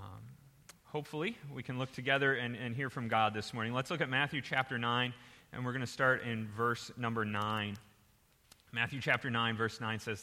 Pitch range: 110-145 Hz